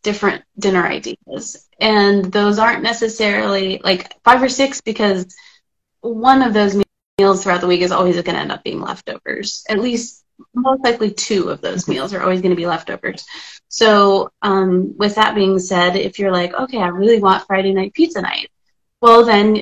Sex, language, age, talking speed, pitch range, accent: female, English, 20-39, 185 wpm, 185-230 Hz, American